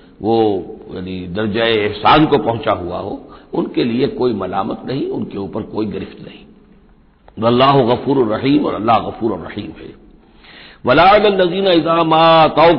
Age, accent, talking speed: 60-79, native, 145 wpm